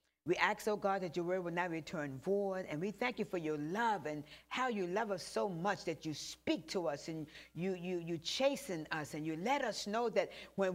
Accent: American